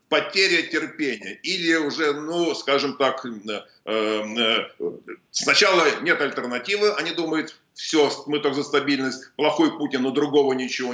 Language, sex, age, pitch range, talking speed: Russian, male, 50-69, 110-150 Hz, 120 wpm